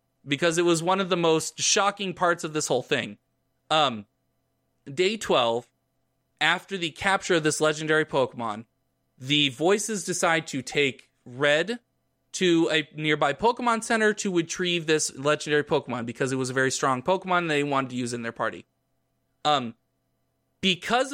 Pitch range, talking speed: 135-180 Hz, 155 wpm